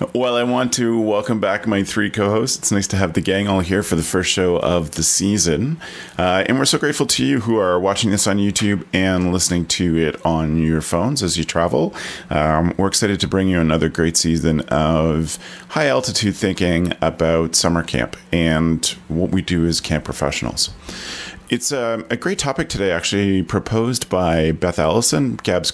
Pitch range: 85-110 Hz